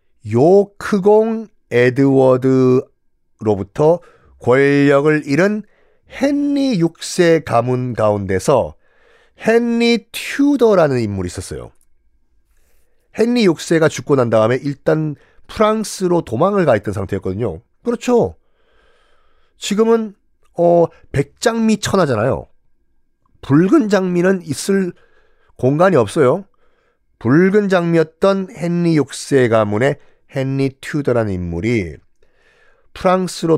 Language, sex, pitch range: Korean, male, 130-205 Hz